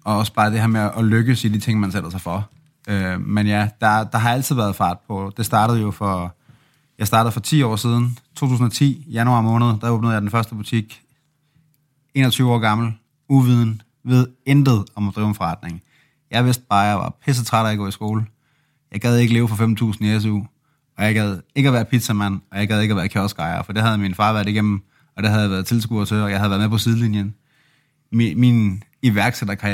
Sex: male